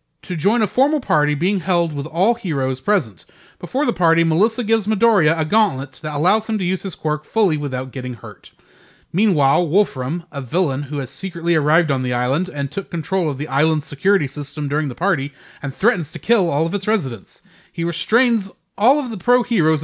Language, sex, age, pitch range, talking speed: English, male, 30-49, 150-205 Hz, 200 wpm